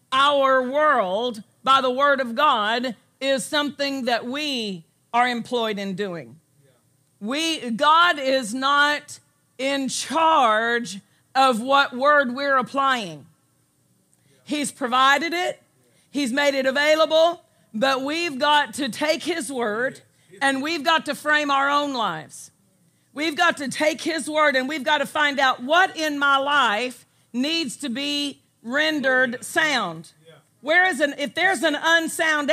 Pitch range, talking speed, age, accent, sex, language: 240-305 Hz, 140 wpm, 50-69, American, female, English